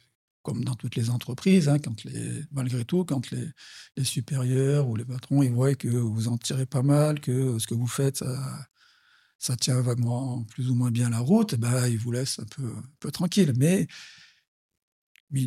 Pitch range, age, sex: 120-140 Hz, 60-79, male